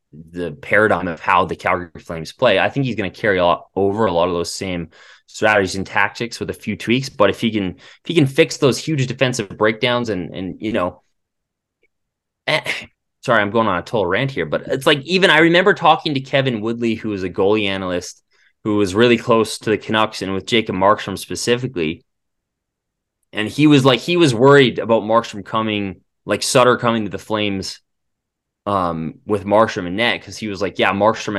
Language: English